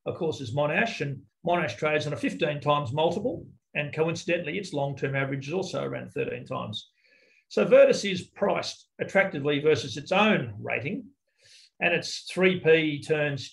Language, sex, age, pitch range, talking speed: English, male, 40-59, 135-160 Hz, 155 wpm